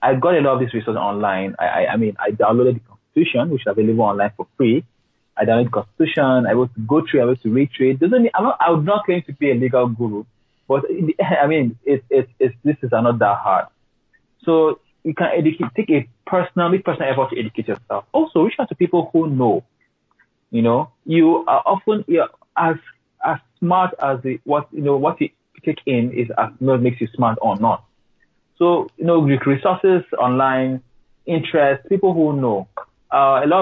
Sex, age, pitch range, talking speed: male, 30-49, 115-160 Hz, 205 wpm